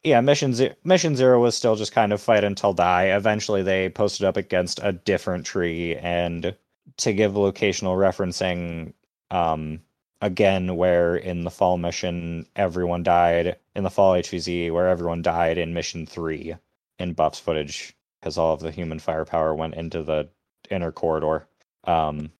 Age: 20-39